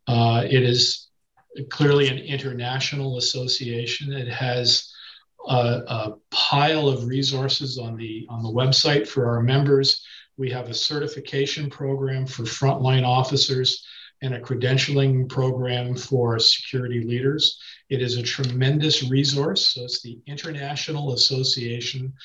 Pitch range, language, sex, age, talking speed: 120-135 Hz, English, male, 50-69, 125 wpm